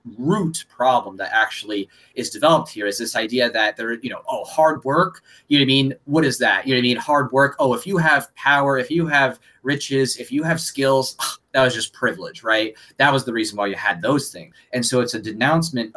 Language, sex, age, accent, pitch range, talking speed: English, male, 30-49, American, 115-135 Hz, 240 wpm